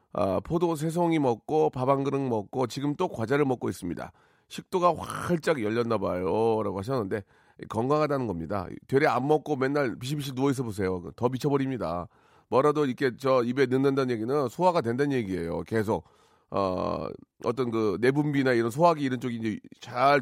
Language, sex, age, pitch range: Korean, male, 40-59, 100-140 Hz